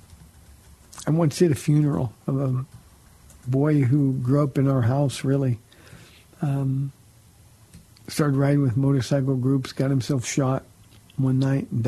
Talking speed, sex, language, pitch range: 135 wpm, male, English, 120-145 Hz